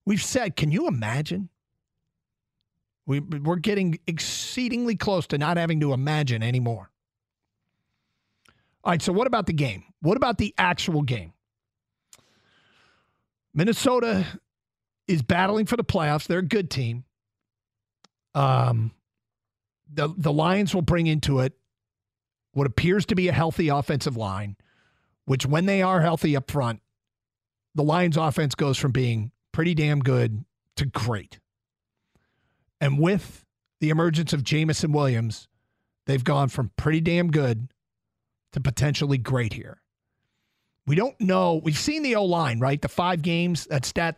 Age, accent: 40-59, American